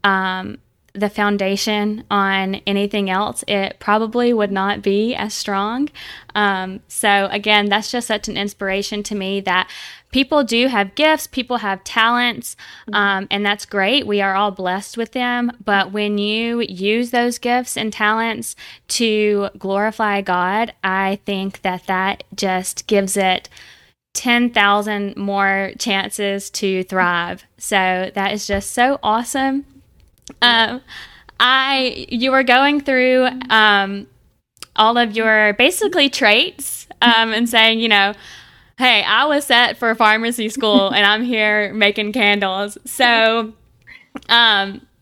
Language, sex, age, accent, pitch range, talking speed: English, female, 10-29, American, 195-235 Hz, 135 wpm